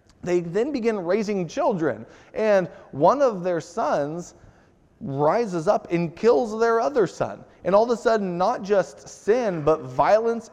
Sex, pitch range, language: male, 155-220 Hz, English